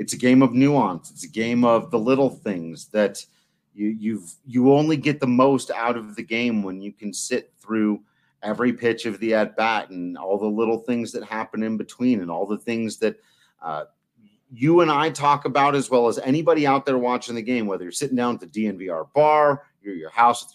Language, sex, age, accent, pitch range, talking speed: English, male, 40-59, American, 110-140 Hz, 225 wpm